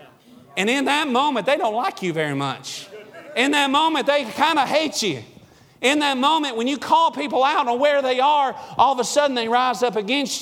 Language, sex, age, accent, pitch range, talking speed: English, male, 40-59, American, 215-280 Hz, 220 wpm